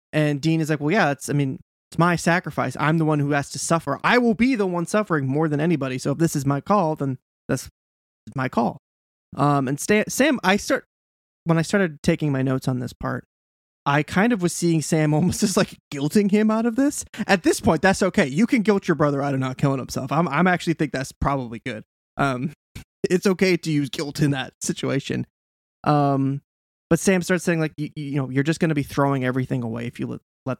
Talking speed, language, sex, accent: 230 wpm, English, male, American